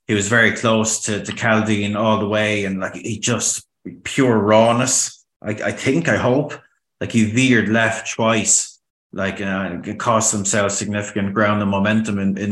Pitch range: 100-110 Hz